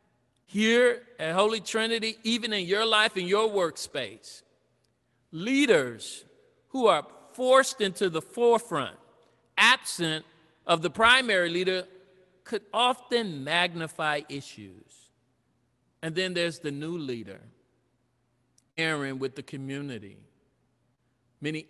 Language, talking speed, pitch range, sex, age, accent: English, 105 wpm, 125-185 Hz, male, 50-69, American